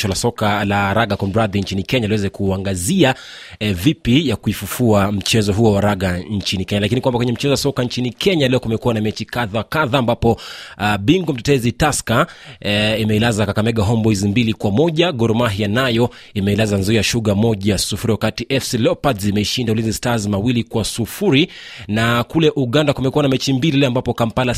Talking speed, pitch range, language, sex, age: 105 wpm, 105-130 Hz, Swahili, male, 30-49